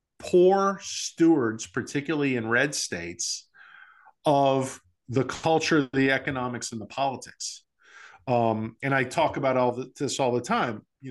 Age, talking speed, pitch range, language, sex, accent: 50-69, 140 wpm, 120-165 Hz, English, male, American